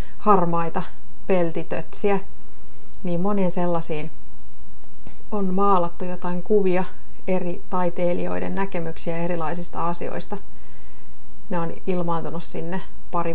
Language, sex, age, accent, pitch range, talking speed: Finnish, female, 30-49, native, 165-190 Hz, 85 wpm